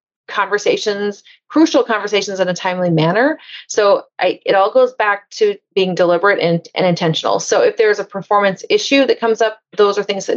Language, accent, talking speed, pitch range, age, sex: English, American, 185 wpm, 175-215 Hz, 30-49, female